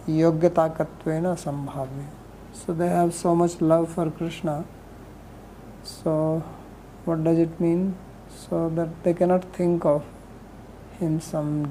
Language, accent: English, Indian